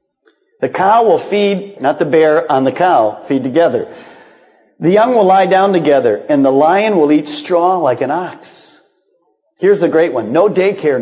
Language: English